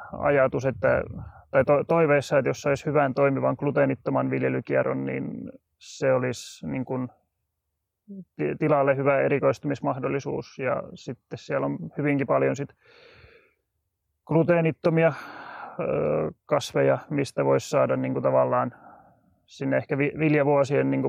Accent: native